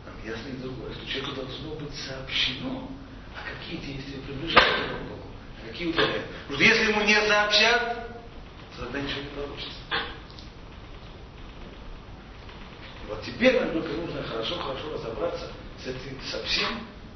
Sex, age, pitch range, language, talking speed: male, 40-59, 130-215 Hz, Russian, 135 wpm